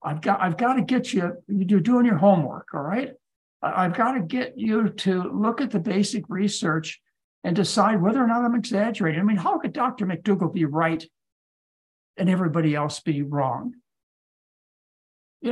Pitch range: 165-230 Hz